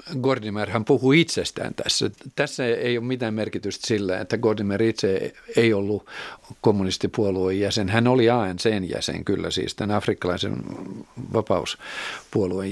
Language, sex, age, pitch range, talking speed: Finnish, male, 50-69, 100-130 Hz, 120 wpm